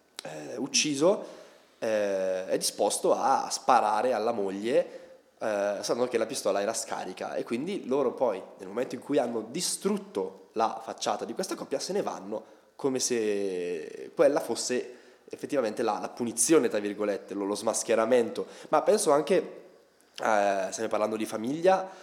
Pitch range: 100-160 Hz